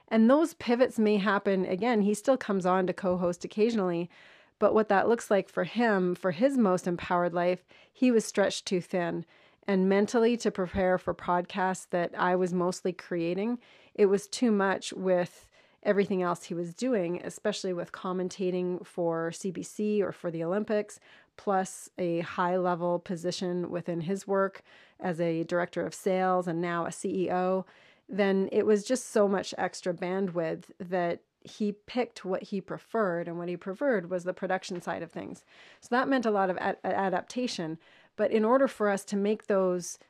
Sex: female